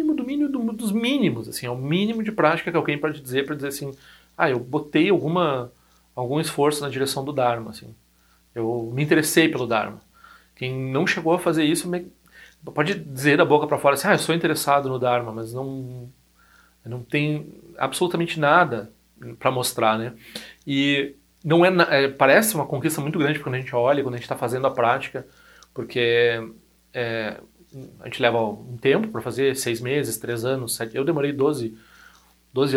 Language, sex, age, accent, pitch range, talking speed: Portuguese, male, 40-59, Brazilian, 120-155 Hz, 180 wpm